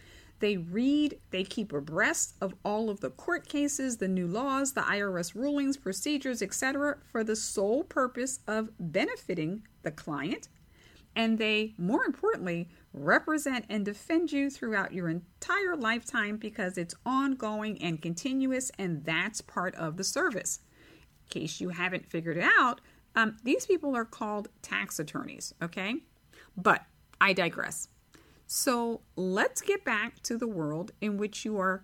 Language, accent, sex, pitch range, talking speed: English, American, female, 185-270 Hz, 150 wpm